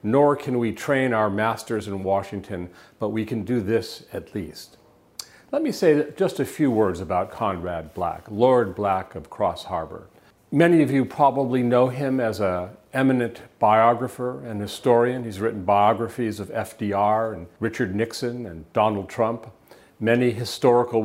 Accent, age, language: American, 50-69, English